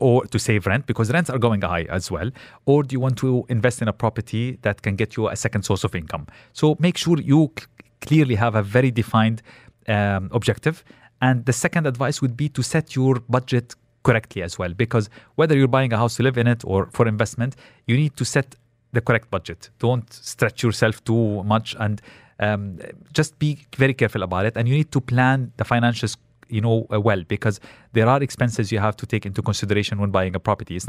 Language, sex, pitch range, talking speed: English, male, 105-125 Hz, 215 wpm